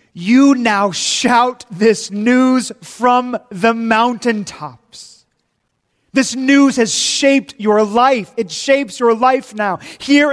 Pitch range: 155-220 Hz